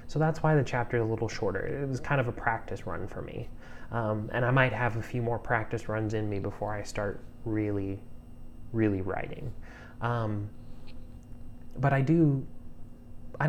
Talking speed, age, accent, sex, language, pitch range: 180 wpm, 20-39, American, male, English, 105-120 Hz